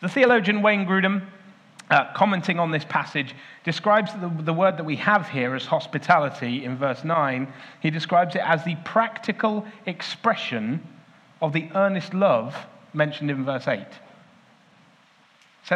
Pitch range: 150-195 Hz